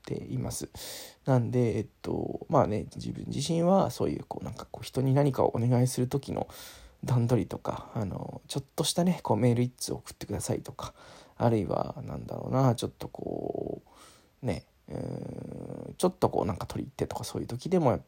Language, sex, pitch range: Japanese, male, 120-140 Hz